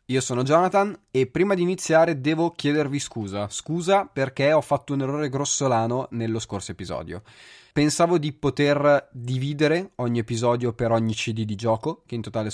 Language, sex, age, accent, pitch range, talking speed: Italian, male, 20-39, native, 110-145 Hz, 165 wpm